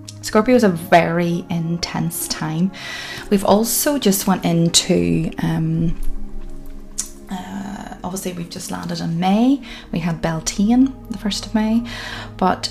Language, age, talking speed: English, 20-39, 130 wpm